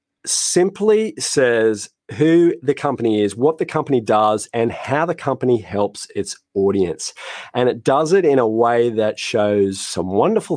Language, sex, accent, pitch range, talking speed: English, male, Australian, 105-135 Hz, 160 wpm